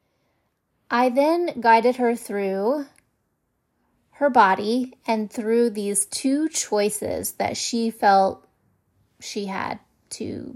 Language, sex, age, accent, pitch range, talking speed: English, female, 30-49, American, 215-260 Hz, 100 wpm